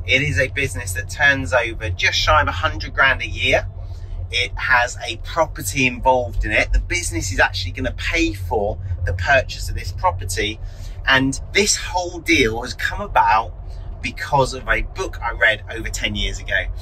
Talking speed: 180 wpm